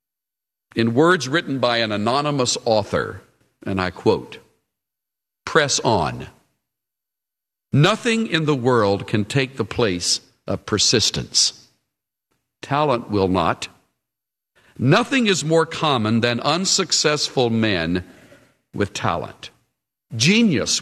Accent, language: American, English